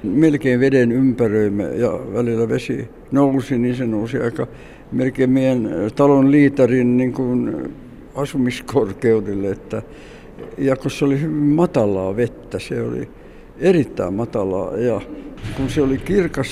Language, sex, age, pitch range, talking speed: Finnish, male, 60-79, 120-145 Hz, 120 wpm